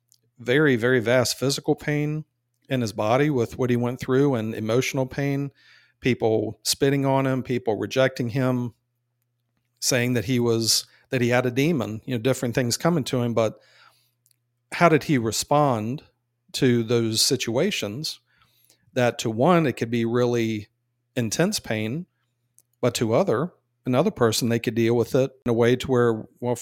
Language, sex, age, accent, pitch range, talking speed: English, male, 40-59, American, 115-130 Hz, 160 wpm